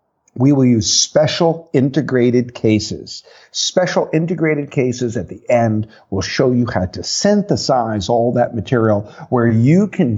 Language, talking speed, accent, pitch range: English, 140 wpm, American, 115-190 Hz